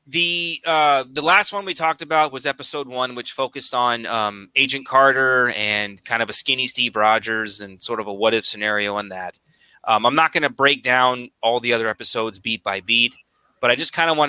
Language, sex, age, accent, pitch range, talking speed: English, male, 30-49, American, 110-140 Hz, 220 wpm